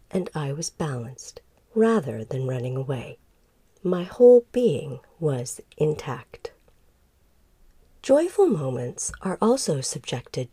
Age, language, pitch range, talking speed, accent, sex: 40-59, English, 145-225 Hz, 105 wpm, American, female